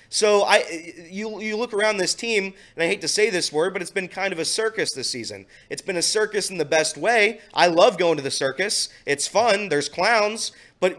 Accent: American